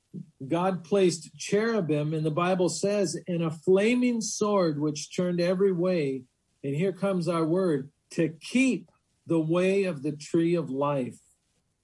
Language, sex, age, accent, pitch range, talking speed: English, male, 50-69, American, 145-180 Hz, 145 wpm